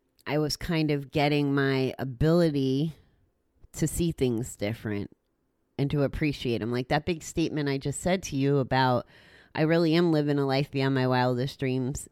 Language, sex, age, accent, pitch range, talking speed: English, female, 30-49, American, 125-160 Hz, 175 wpm